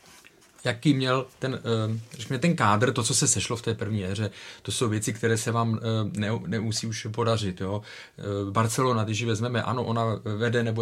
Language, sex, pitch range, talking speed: Czech, male, 105-125 Hz, 185 wpm